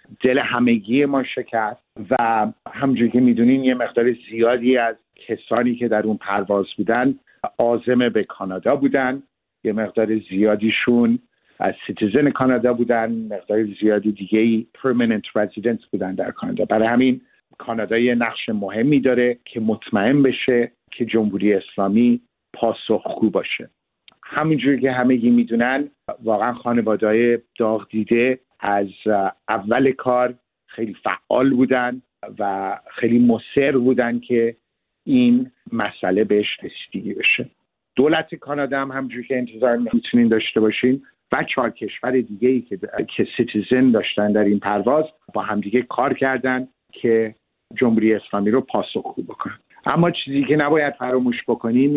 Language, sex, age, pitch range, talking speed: Persian, male, 50-69, 110-130 Hz, 135 wpm